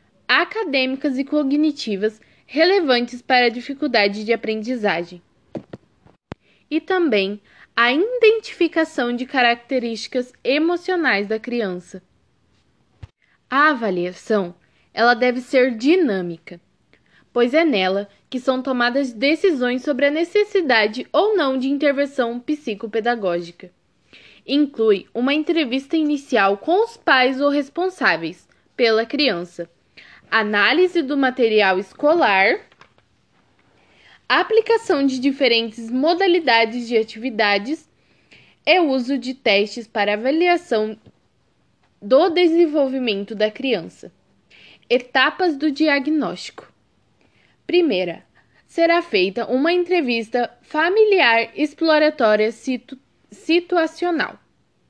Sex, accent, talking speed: female, Brazilian, 90 wpm